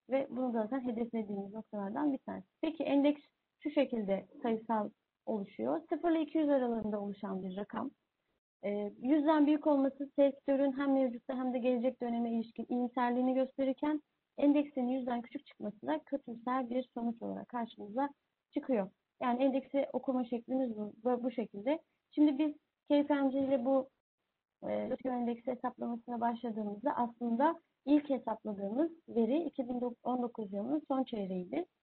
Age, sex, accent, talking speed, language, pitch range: 30-49, female, native, 130 wpm, Turkish, 230-280 Hz